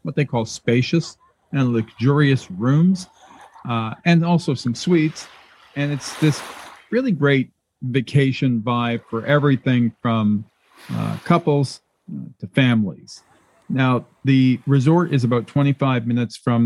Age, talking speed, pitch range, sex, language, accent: 50-69, 125 wpm, 115-140 Hz, male, English, American